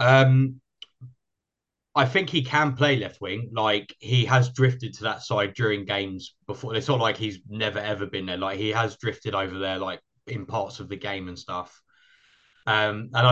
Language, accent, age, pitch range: English, British, 20-39, 105-125 Hz